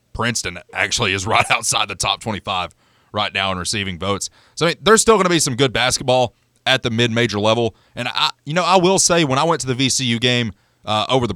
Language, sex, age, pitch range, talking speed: English, male, 30-49, 105-135 Hz, 220 wpm